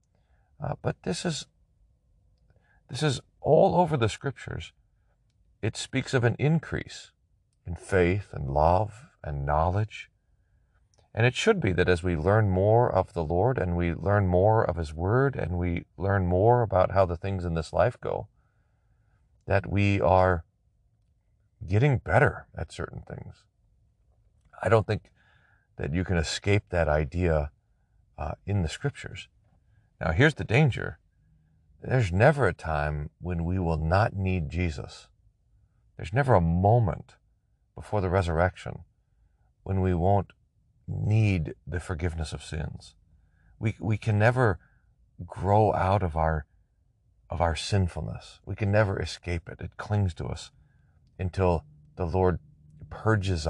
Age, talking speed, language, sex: 40-59, 140 wpm, English, male